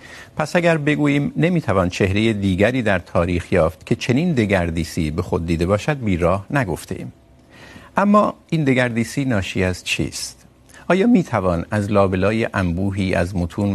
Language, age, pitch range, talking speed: Urdu, 50-69, 95-130 Hz, 140 wpm